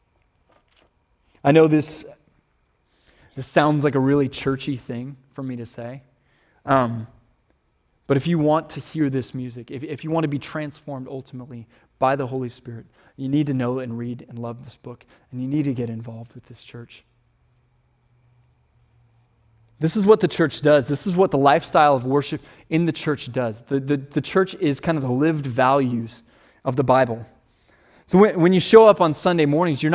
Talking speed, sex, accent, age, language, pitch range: 185 wpm, male, American, 20-39, English, 125-155 Hz